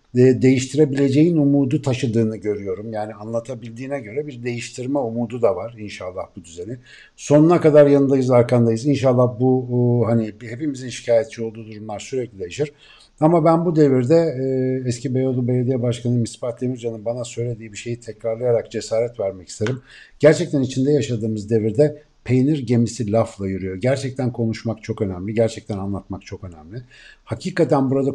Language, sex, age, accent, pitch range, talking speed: Turkish, male, 60-79, native, 115-145 Hz, 135 wpm